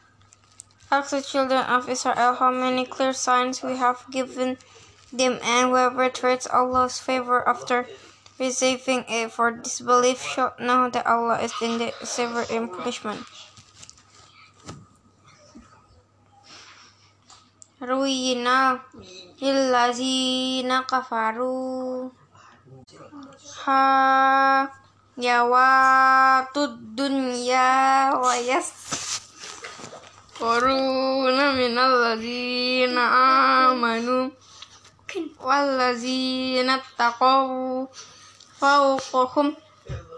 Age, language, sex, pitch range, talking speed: 20-39, English, female, 245-270 Hz, 60 wpm